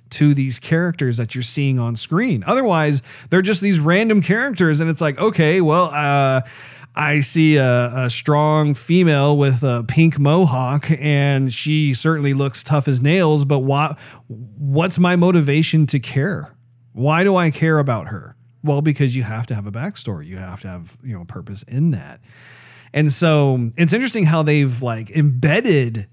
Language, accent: English, American